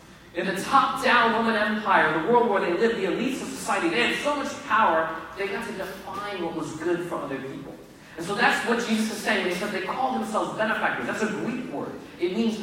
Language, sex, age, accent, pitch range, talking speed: English, male, 30-49, American, 165-225 Hz, 230 wpm